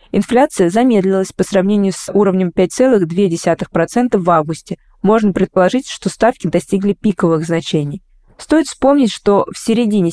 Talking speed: 125 wpm